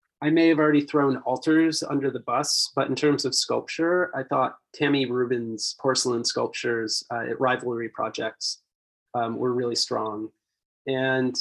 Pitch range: 120-145 Hz